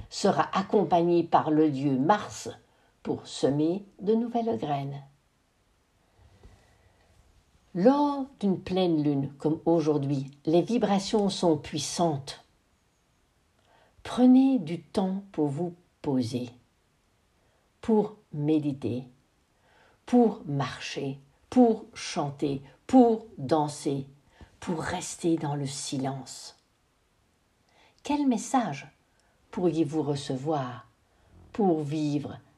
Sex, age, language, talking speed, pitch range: female, 60-79, French, 85 wpm, 135-175 Hz